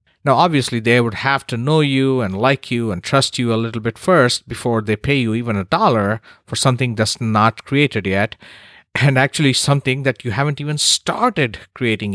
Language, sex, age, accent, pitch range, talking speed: English, male, 50-69, Indian, 110-130 Hz, 200 wpm